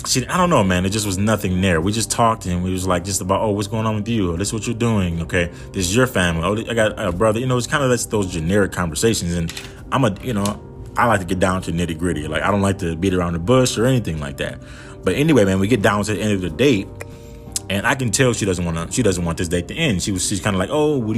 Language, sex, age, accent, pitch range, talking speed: English, male, 20-39, American, 90-115 Hz, 310 wpm